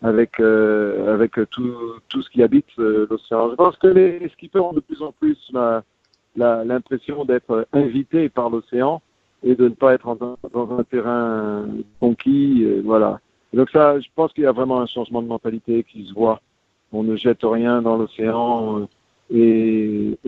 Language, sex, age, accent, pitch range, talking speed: French, male, 50-69, French, 115-135 Hz, 185 wpm